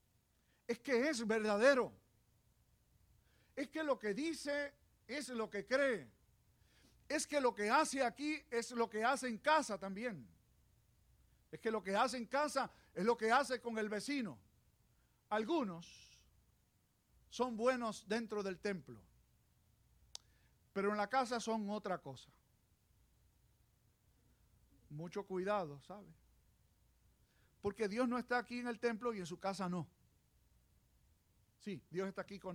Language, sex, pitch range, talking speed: Spanish, male, 160-255 Hz, 135 wpm